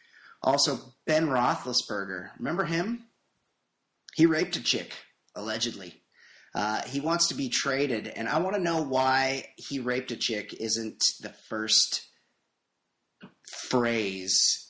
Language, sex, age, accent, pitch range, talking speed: English, male, 30-49, American, 105-135 Hz, 125 wpm